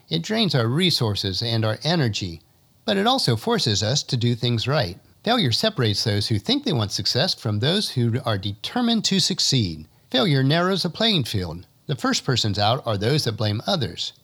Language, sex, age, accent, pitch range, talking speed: English, male, 50-69, American, 110-160 Hz, 190 wpm